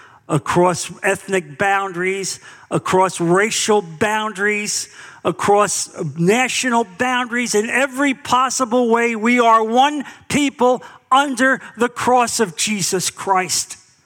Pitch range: 130-205 Hz